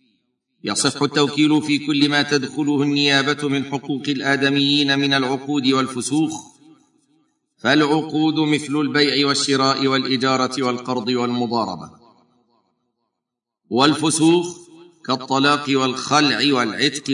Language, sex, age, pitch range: Arabic, male, 50-69, 125-150 Hz